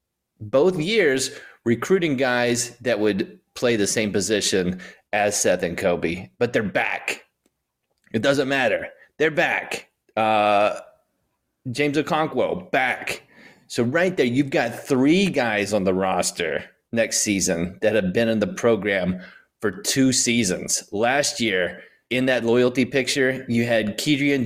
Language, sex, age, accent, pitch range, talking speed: English, male, 30-49, American, 105-145 Hz, 135 wpm